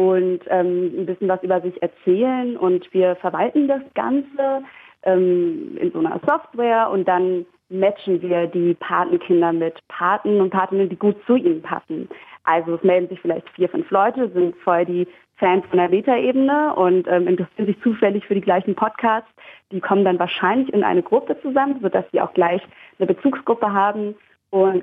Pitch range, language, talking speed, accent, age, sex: 175-200 Hz, German, 175 wpm, German, 30-49, female